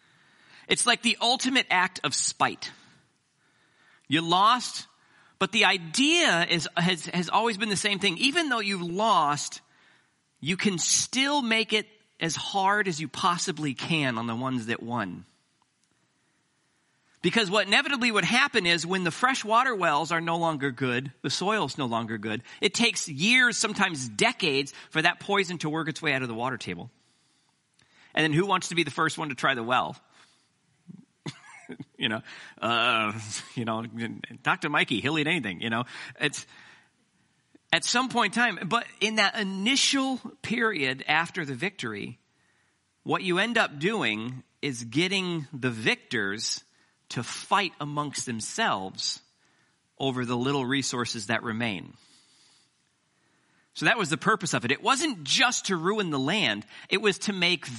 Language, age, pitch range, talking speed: English, 40-59, 130-210 Hz, 160 wpm